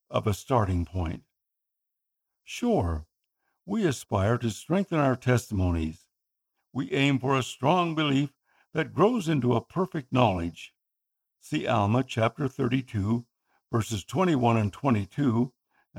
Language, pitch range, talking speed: English, 110-135 Hz, 115 wpm